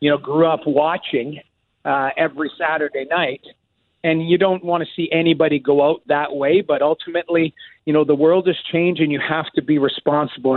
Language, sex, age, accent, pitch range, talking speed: English, male, 40-59, American, 135-155 Hz, 190 wpm